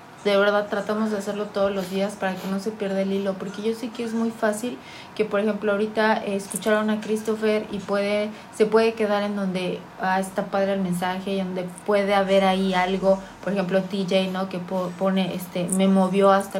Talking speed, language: 205 wpm, Spanish